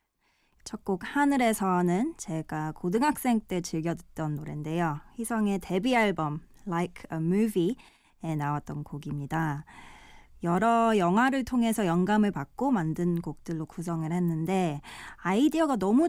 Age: 20-39